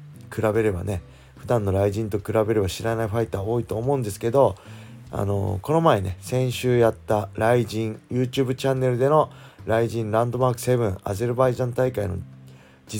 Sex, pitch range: male, 95-120 Hz